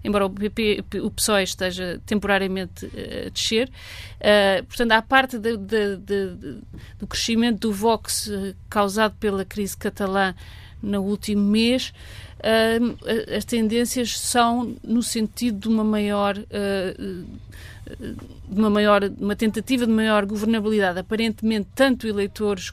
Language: Portuguese